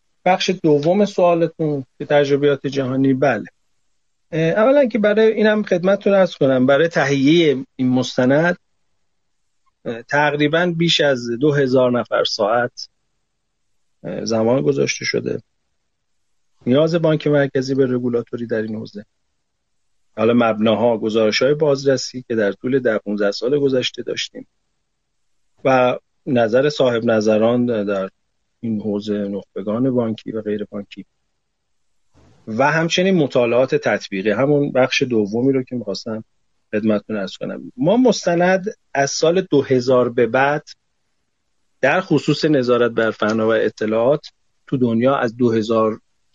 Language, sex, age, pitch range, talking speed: Persian, male, 40-59, 110-150 Hz, 120 wpm